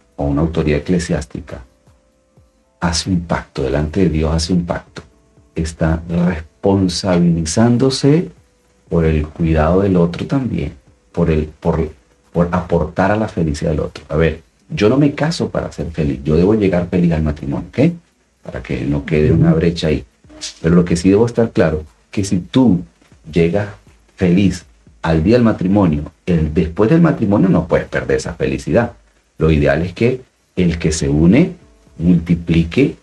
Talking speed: 155 wpm